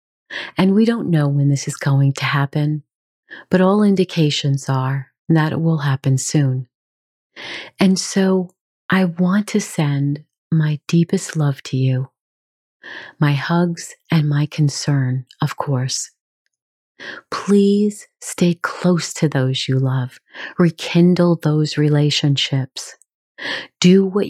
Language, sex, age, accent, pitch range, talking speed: English, female, 40-59, American, 135-175 Hz, 120 wpm